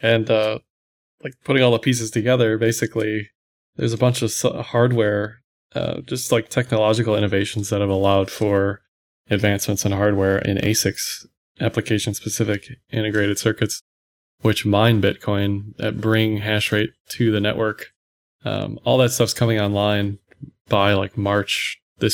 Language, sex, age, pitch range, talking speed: English, male, 20-39, 105-115 Hz, 140 wpm